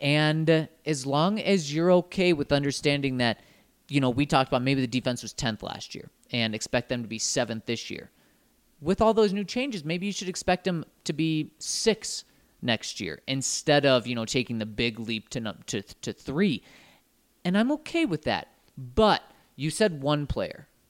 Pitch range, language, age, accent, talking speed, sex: 125-195 Hz, English, 30-49, American, 190 wpm, male